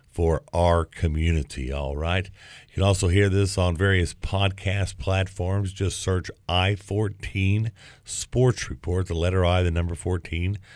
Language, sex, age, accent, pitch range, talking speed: English, male, 50-69, American, 85-100 Hz, 140 wpm